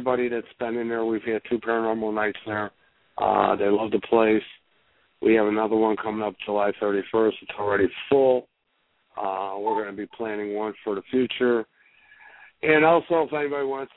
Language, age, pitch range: English, 60-79, 105-120 Hz